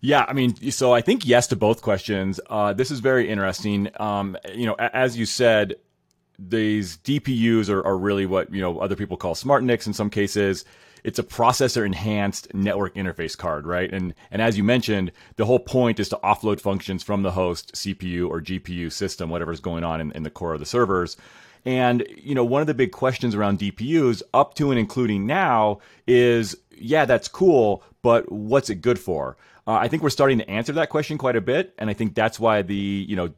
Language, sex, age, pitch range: English, male, 30-49, 95-120 Hz